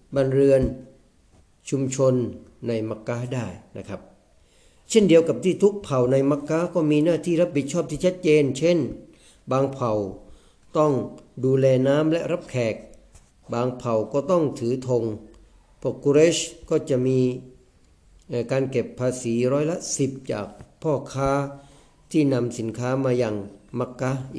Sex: male